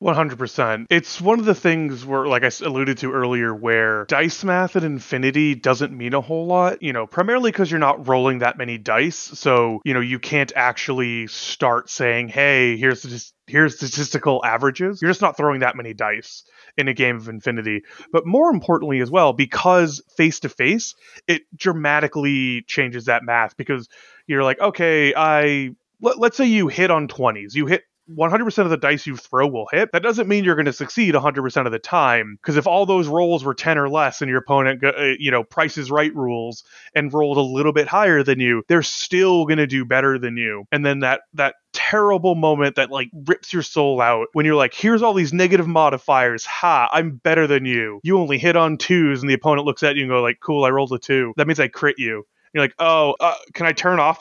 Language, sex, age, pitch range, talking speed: English, male, 30-49, 130-170 Hz, 215 wpm